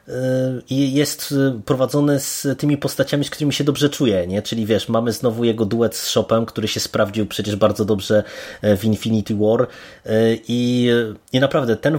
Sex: male